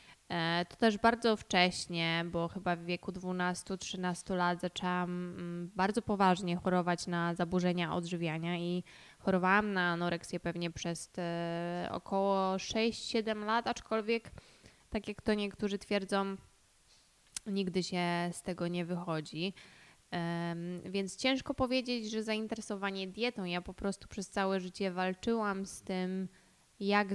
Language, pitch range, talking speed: Polish, 175-205 Hz, 120 wpm